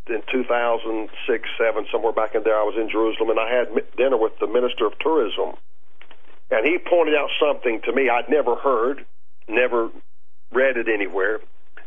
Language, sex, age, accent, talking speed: English, male, 50-69, American, 180 wpm